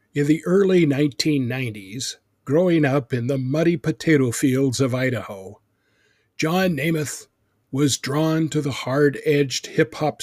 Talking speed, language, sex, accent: 125 wpm, English, male, American